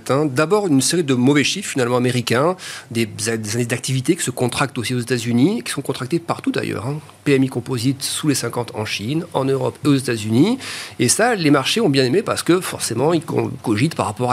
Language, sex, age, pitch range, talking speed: French, male, 40-59, 125-165 Hz, 220 wpm